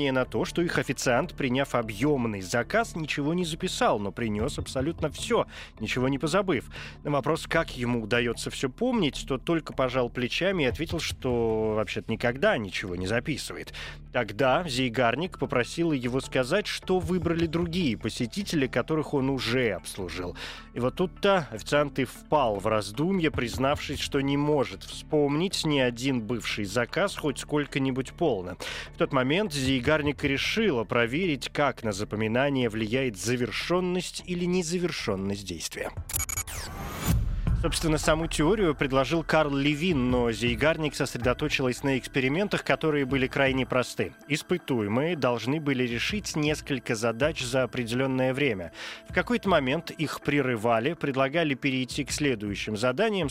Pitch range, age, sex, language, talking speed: 120-155 Hz, 20-39, male, Russian, 135 wpm